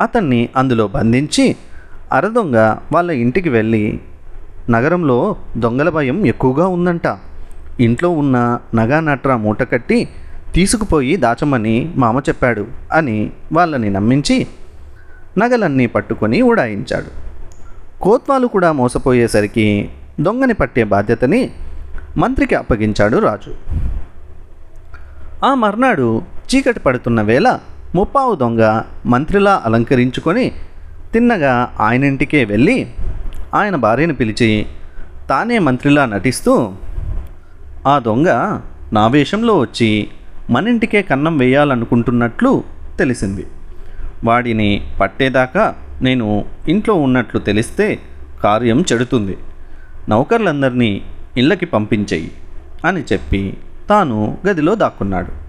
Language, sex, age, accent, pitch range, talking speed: Telugu, male, 30-49, native, 90-140 Hz, 85 wpm